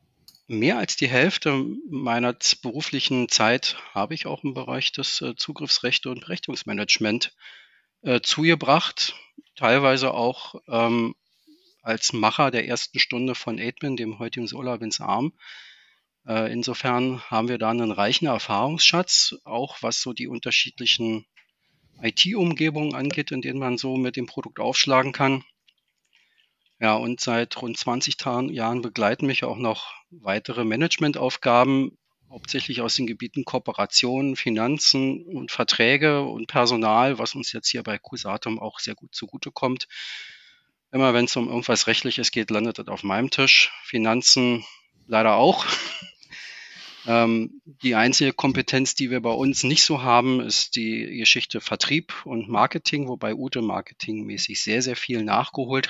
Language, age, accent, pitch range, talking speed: German, 40-59, German, 115-135 Hz, 140 wpm